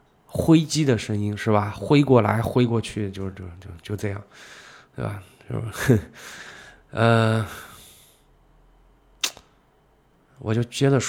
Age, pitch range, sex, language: 20-39, 105-125 Hz, male, Chinese